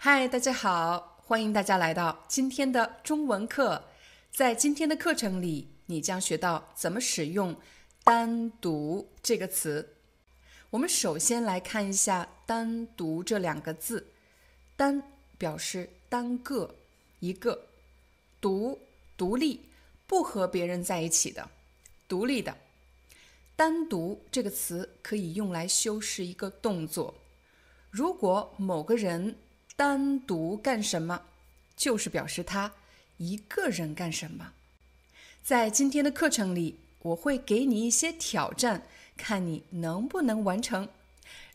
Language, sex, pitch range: Chinese, female, 175-245 Hz